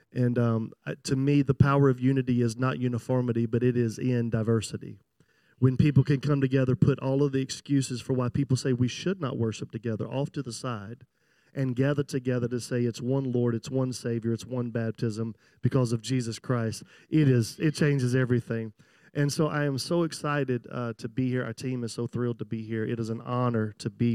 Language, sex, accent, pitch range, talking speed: English, male, American, 120-135 Hz, 215 wpm